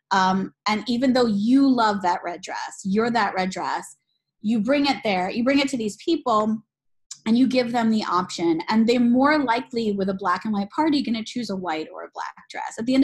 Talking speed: 225 wpm